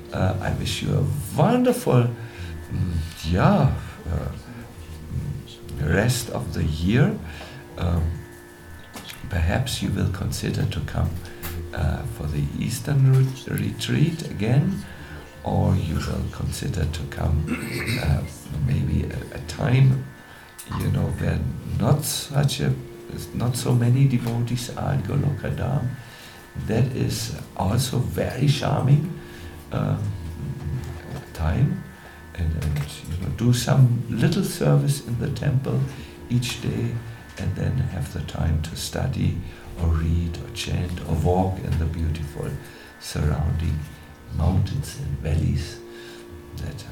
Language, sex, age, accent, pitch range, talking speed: English, male, 60-79, German, 85-130 Hz, 115 wpm